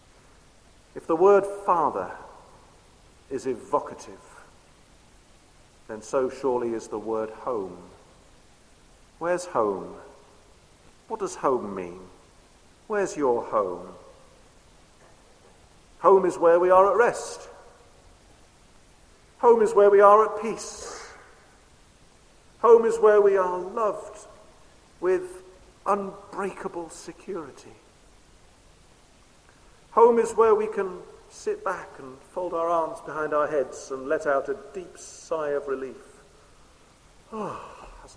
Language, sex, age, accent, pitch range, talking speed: English, male, 50-69, British, 175-280 Hz, 110 wpm